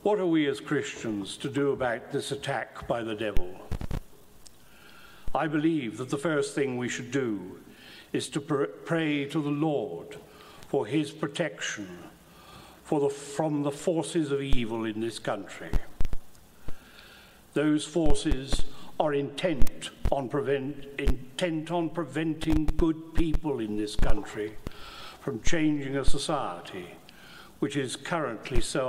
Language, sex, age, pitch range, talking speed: English, male, 60-79, 130-160 Hz, 125 wpm